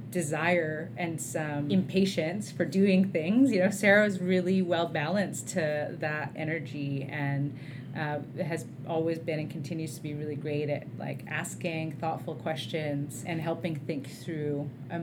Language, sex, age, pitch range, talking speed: English, female, 30-49, 145-175 Hz, 150 wpm